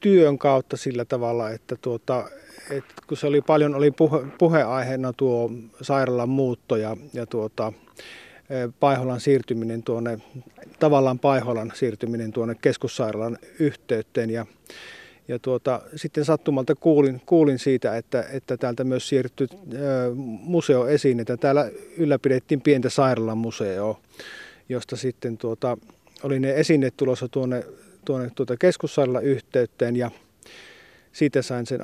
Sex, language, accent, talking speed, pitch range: male, Finnish, native, 120 wpm, 120-140 Hz